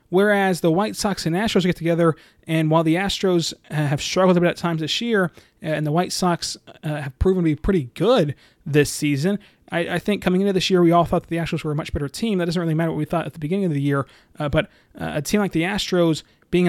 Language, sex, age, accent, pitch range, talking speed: English, male, 30-49, American, 150-180 Hz, 270 wpm